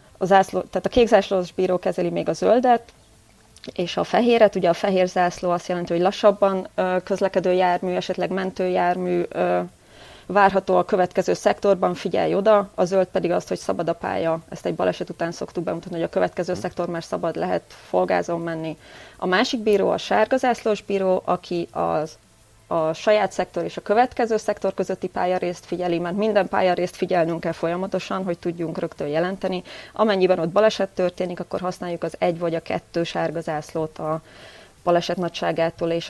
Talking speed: 165 wpm